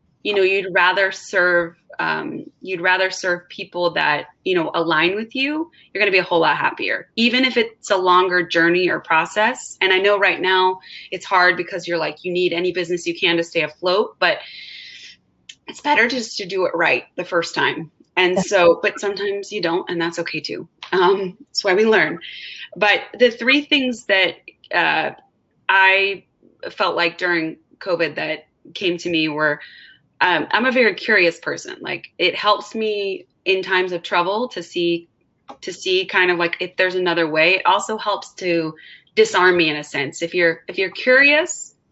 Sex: female